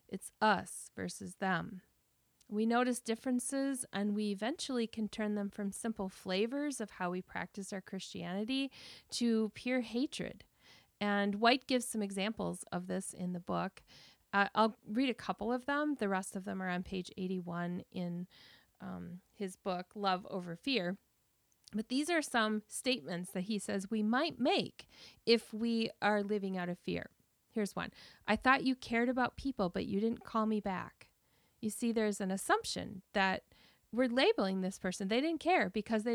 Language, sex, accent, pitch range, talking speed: English, female, American, 190-255 Hz, 175 wpm